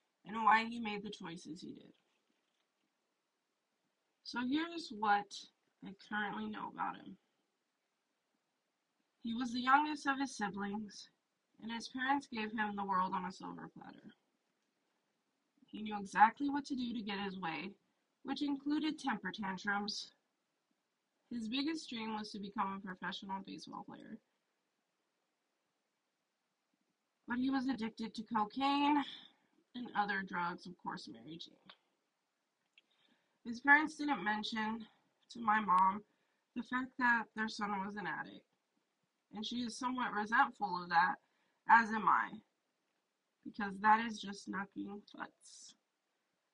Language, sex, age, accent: English, female, 20-39, American